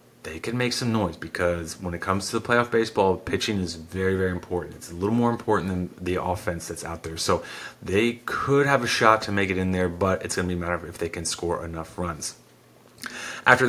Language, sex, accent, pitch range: English, male, American, 90-115 Hz